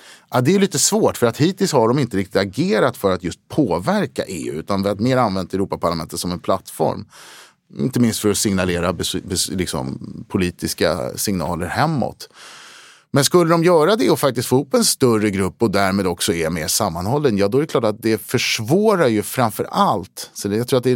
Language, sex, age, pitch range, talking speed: Swedish, male, 30-49, 100-140 Hz, 200 wpm